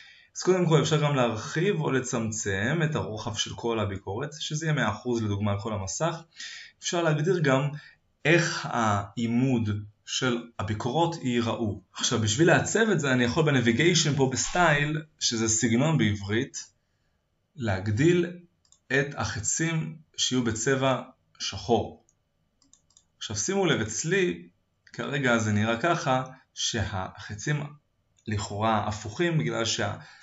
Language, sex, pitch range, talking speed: Hebrew, male, 105-145 Hz, 115 wpm